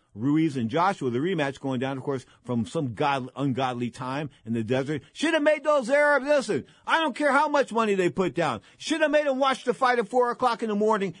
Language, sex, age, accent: English, male, 50-69, American